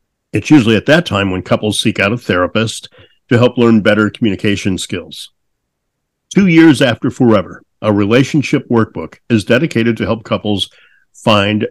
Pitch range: 100-130 Hz